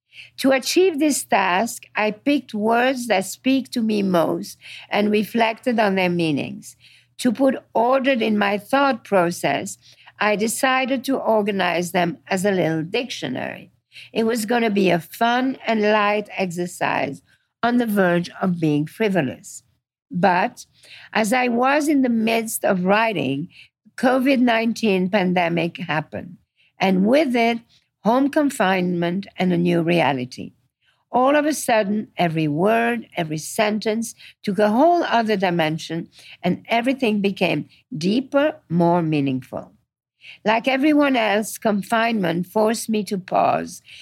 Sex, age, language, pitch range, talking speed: female, 60-79, English, 175-235 Hz, 130 wpm